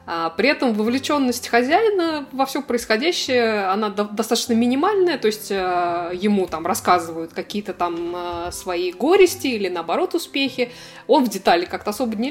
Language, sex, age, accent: Russian, female, 20-39, native